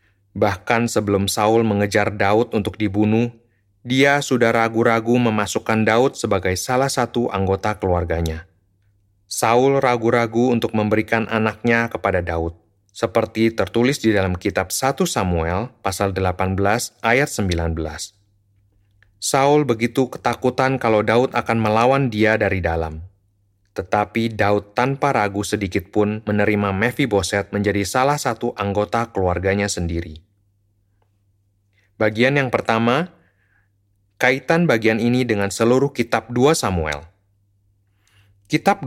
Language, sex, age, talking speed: Indonesian, male, 30-49, 110 wpm